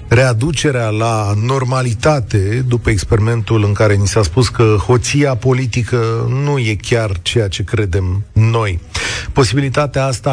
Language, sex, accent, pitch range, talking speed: Romanian, male, native, 110-150 Hz, 130 wpm